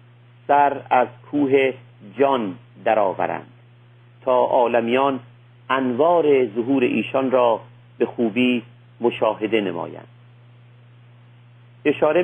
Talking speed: 80 wpm